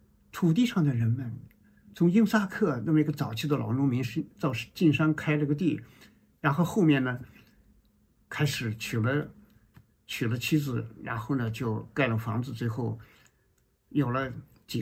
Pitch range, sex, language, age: 115-155 Hz, male, Chinese, 50-69